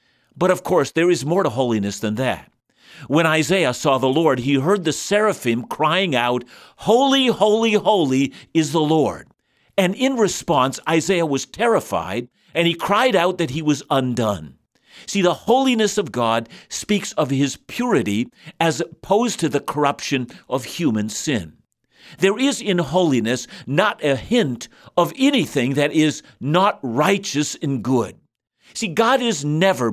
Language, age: English, 50-69